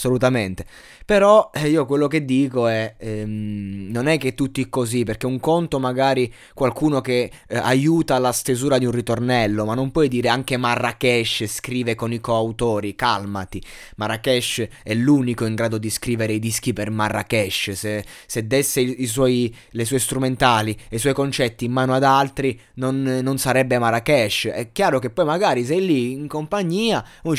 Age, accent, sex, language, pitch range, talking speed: 20-39, native, male, Italian, 120-150 Hz, 175 wpm